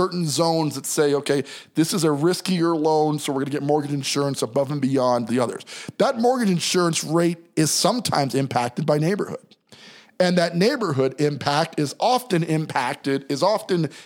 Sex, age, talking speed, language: male, 50-69, 170 wpm, English